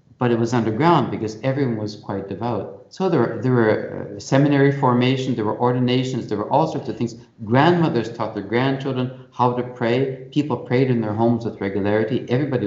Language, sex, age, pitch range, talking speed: English, male, 50-69, 105-135 Hz, 190 wpm